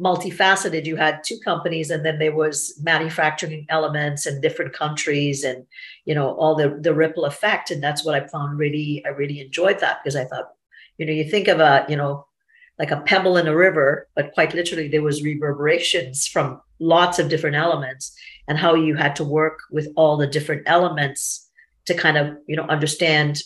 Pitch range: 150-180 Hz